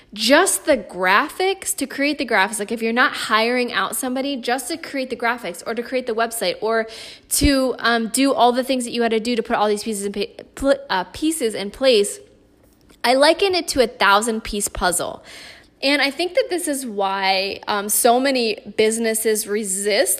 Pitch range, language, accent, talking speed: 210-270 Hz, English, American, 190 wpm